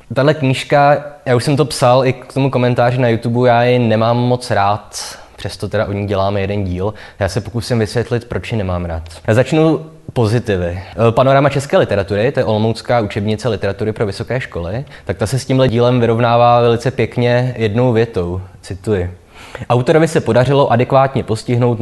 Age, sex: 20-39, male